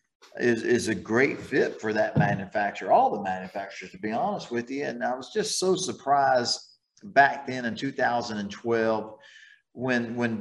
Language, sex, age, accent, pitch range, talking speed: English, male, 40-59, American, 110-135 Hz, 160 wpm